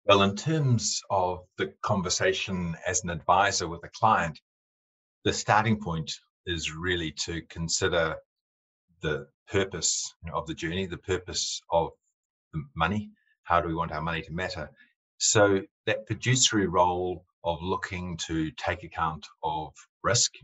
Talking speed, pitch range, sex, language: 140 wpm, 85-100 Hz, male, English